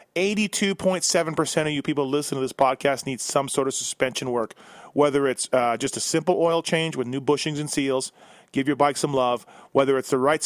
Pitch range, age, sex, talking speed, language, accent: 130-165 Hz, 30-49, male, 200 wpm, English, American